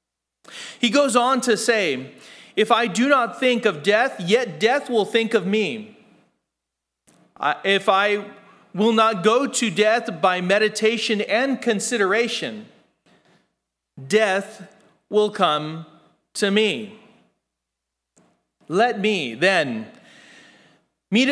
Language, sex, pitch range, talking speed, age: English, male, 180-230 Hz, 105 wpm, 40-59